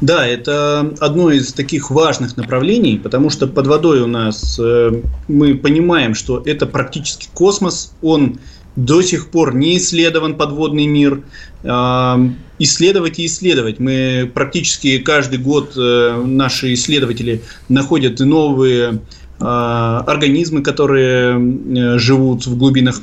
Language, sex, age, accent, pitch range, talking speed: Russian, male, 20-39, native, 120-145 Hz, 120 wpm